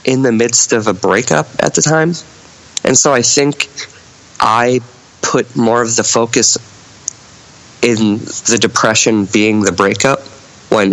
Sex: male